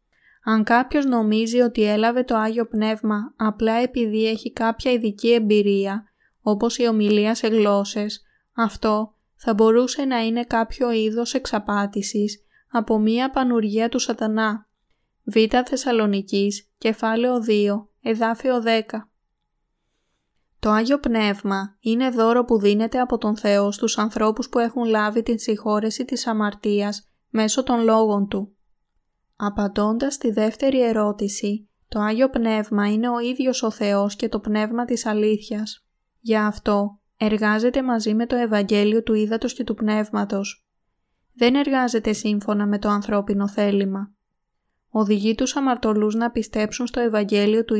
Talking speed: 130 wpm